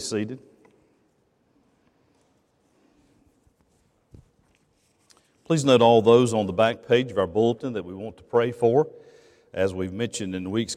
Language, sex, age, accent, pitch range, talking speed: English, male, 50-69, American, 95-120 Hz, 130 wpm